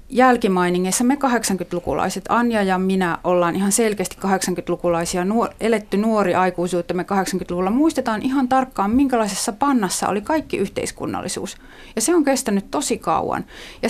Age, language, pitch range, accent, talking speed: 30-49, Finnish, 175-220 Hz, native, 135 wpm